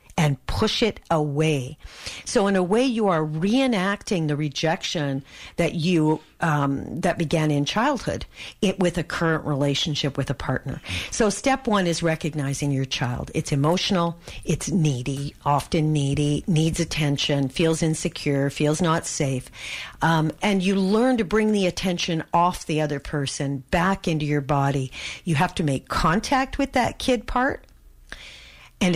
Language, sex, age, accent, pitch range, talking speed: English, female, 50-69, American, 145-195 Hz, 155 wpm